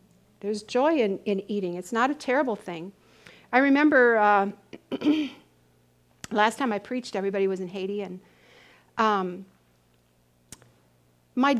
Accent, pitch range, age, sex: American, 195-245 Hz, 50-69, female